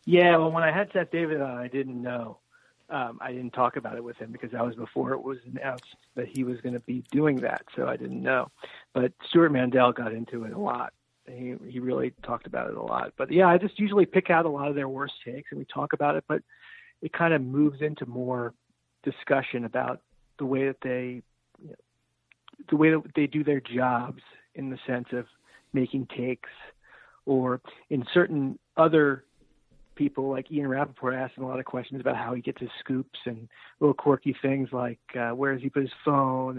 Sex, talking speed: male, 215 wpm